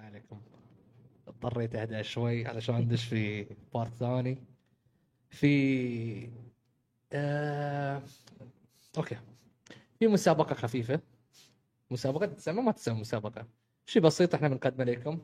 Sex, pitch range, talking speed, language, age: male, 125-160 Hz, 100 wpm, Arabic, 20-39